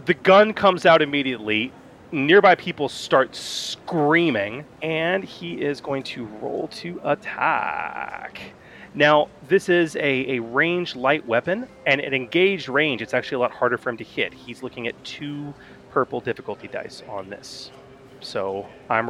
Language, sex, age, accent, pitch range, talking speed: English, male, 30-49, American, 125-170 Hz, 155 wpm